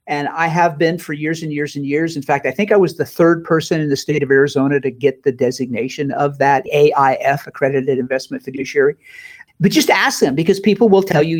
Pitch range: 145-205 Hz